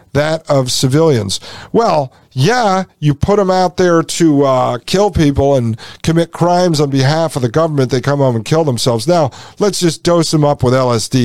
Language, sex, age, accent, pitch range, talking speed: English, male, 50-69, American, 125-175 Hz, 190 wpm